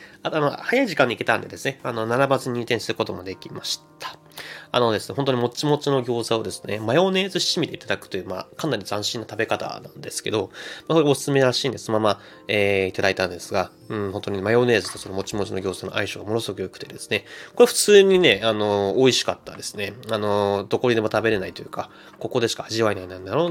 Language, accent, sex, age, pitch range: Japanese, native, male, 30-49, 100-135 Hz